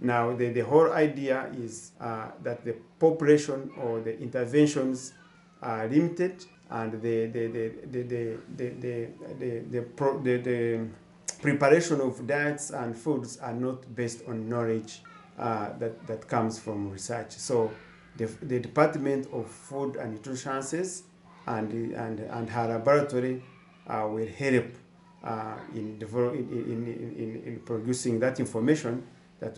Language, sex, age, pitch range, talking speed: English, male, 50-69, 115-145 Hz, 120 wpm